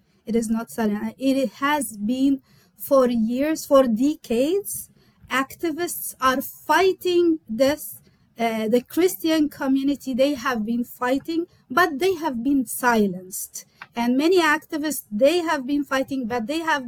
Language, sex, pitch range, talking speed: English, female, 235-295 Hz, 130 wpm